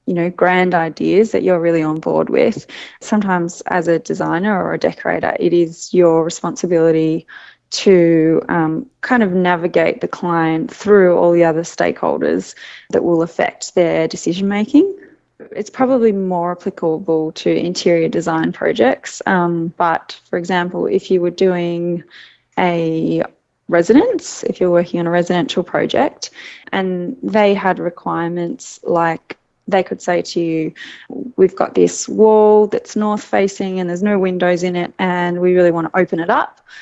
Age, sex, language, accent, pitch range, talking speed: 20-39, female, English, Australian, 170-195 Hz, 155 wpm